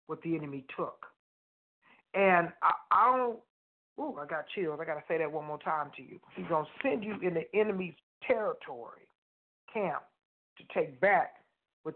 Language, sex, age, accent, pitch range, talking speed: English, male, 40-59, American, 145-165 Hz, 180 wpm